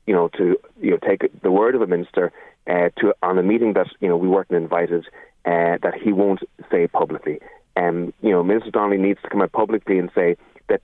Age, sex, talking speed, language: 30-49, male, 235 wpm, English